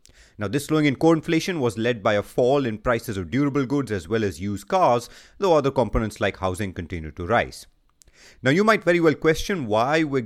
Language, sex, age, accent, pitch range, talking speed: English, male, 30-49, Indian, 100-145 Hz, 215 wpm